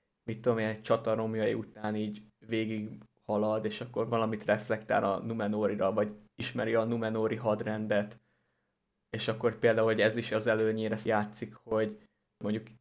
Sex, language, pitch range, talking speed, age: male, Hungarian, 110-120 Hz, 135 wpm, 20-39